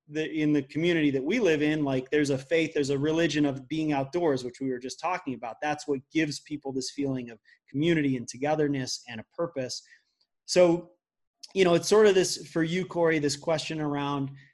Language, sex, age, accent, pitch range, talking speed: English, male, 30-49, American, 140-165 Hz, 205 wpm